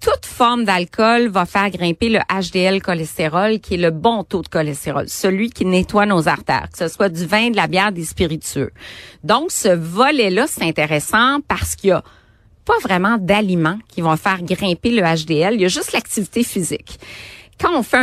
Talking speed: 195 wpm